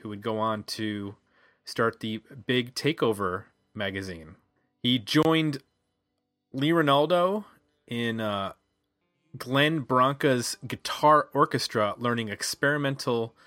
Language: English